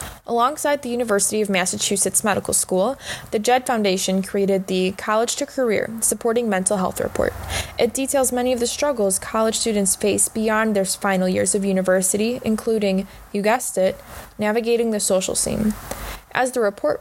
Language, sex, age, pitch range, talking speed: English, female, 20-39, 195-235 Hz, 160 wpm